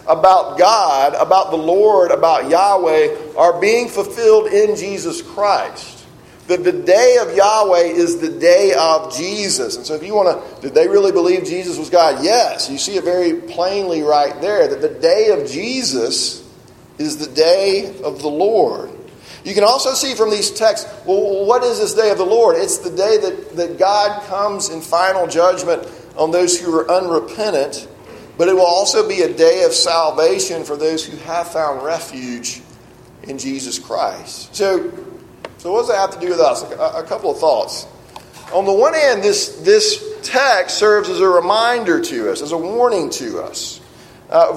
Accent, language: American, English